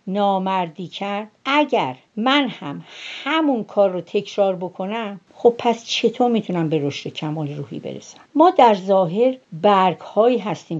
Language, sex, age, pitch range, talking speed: Persian, female, 60-79, 145-215 Hz, 140 wpm